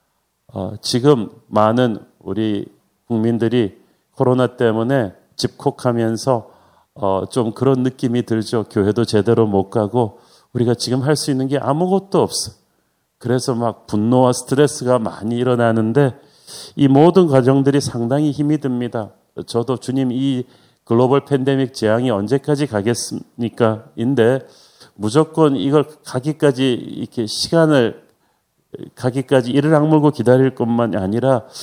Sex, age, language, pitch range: male, 40-59, Korean, 115-140 Hz